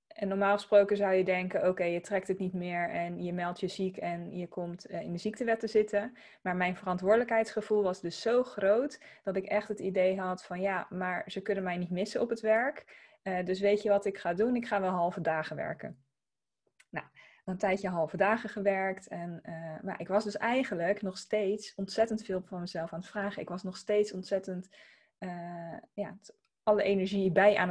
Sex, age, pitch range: female, 20-39, 170-205 Hz